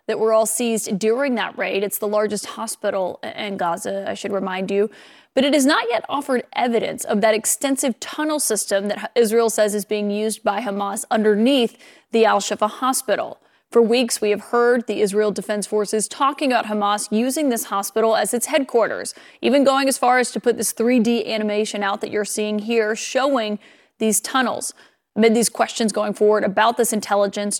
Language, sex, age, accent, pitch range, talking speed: English, female, 30-49, American, 210-245 Hz, 185 wpm